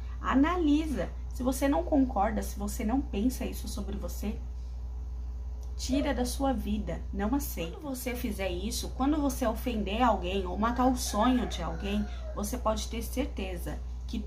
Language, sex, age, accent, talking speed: Portuguese, female, 20-39, Brazilian, 150 wpm